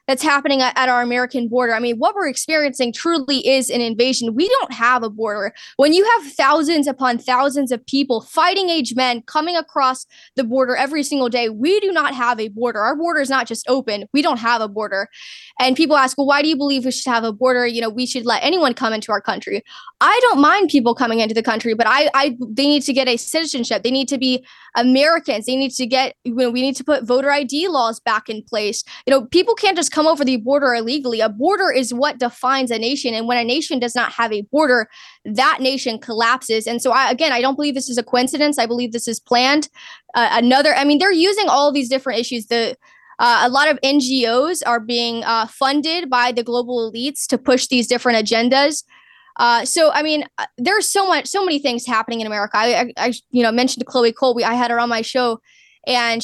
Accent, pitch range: American, 235-290 Hz